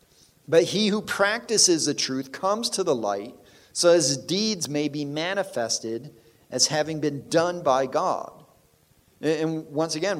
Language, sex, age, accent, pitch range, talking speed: English, male, 40-59, American, 130-165 Hz, 145 wpm